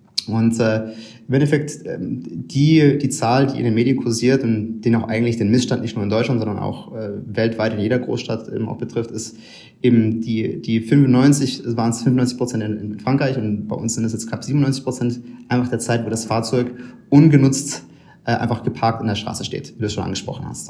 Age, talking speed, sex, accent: 30-49, 215 wpm, male, German